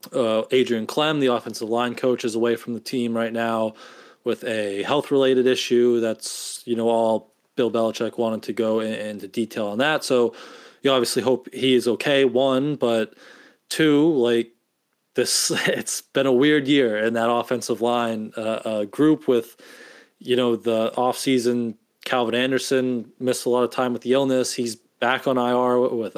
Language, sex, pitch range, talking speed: English, male, 110-130 Hz, 170 wpm